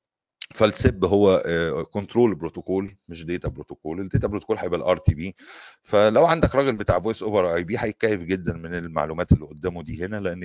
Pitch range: 85-105 Hz